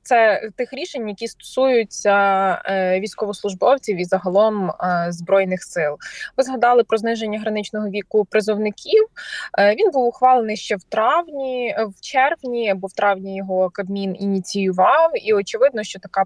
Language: Ukrainian